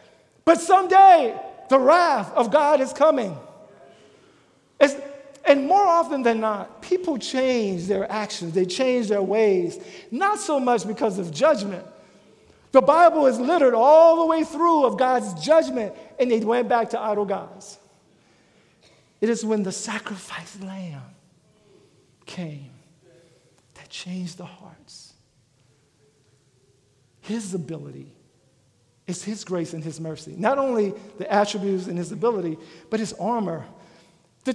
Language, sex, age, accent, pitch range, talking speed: English, male, 50-69, American, 185-285 Hz, 130 wpm